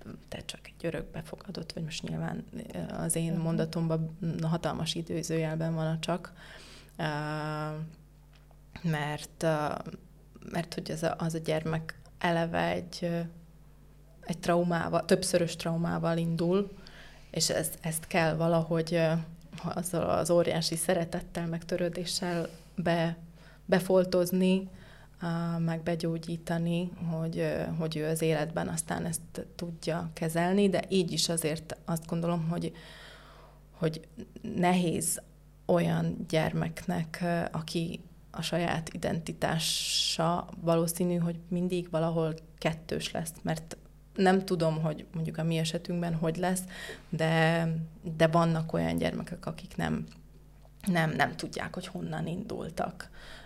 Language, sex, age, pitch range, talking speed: Hungarian, female, 20-39, 160-175 Hz, 110 wpm